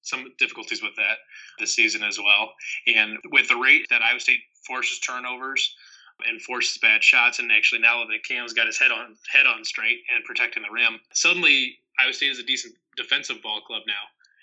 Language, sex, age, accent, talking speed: English, male, 20-39, American, 195 wpm